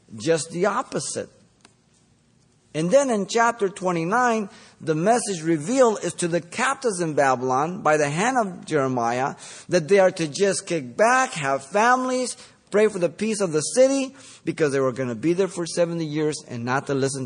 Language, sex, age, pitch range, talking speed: English, male, 50-69, 140-200 Hz, 180 wpm